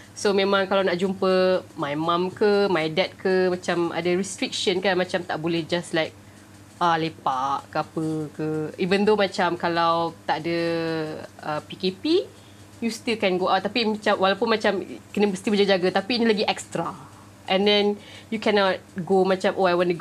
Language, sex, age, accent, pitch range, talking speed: English, female, 20-39, Malaysian, 165-200 Hz, 175 wpm